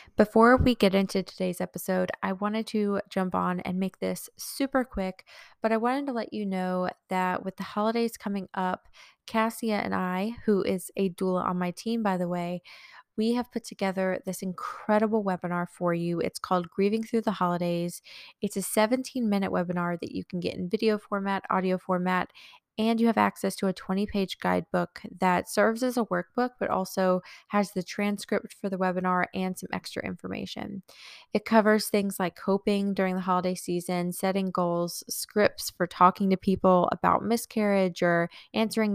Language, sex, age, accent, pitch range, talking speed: English, female, 20-39, American, 180-215 Hz, 180 wpm